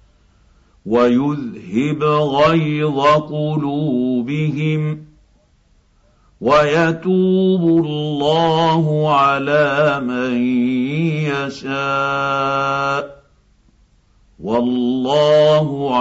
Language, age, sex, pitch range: Arabic, 50-69, male, 125-155 Hz